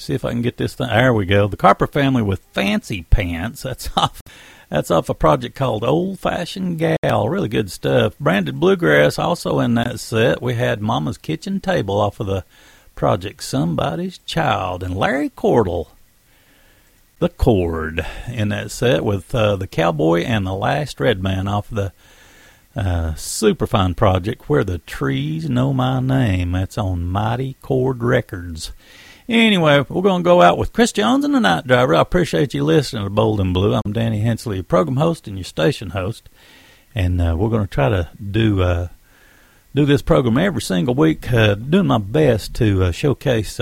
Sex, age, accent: male, 50-69, American